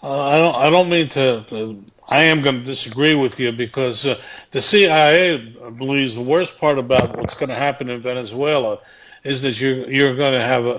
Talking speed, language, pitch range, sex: 205 wpm, English, 120-155 Hz, male